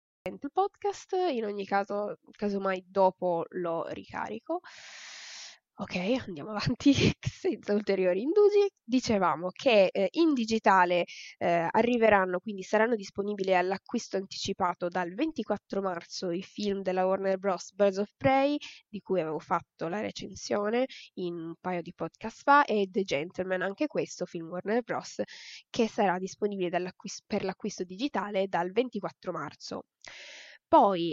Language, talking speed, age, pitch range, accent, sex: Italian, 130 wpm, 10-29, 185-220 Hz, native, female